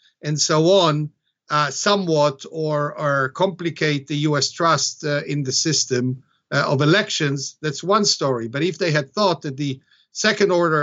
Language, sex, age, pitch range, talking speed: English, male, 50-69, 145-175 Hz, 165 wpm